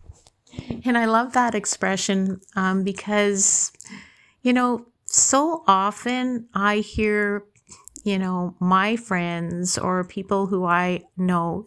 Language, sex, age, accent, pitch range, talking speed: English, female, 50-69, American, 185-210 Hz, 115 wpm